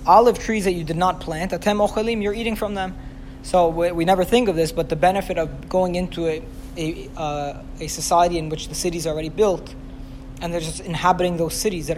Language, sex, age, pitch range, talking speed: English, male, 20-39, 155-190 Hz, 210 wpm